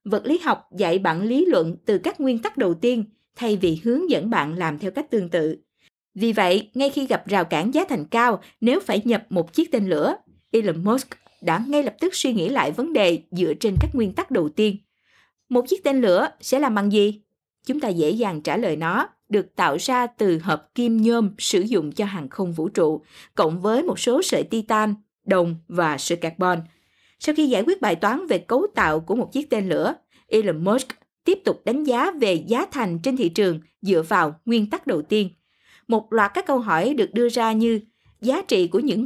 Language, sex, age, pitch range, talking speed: Vietnamese, female, 20-39, 185-265 Hz, 220 wpm